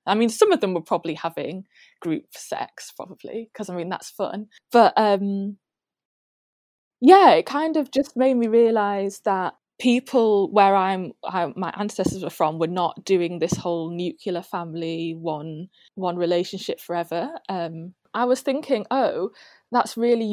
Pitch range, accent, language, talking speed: 175-215 Hz, British, English, 155 wpm